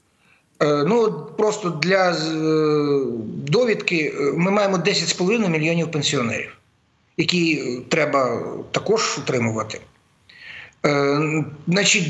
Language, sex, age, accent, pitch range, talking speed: Ukrainian, male, 50-69, native, 150-195 Hz, 65 wpm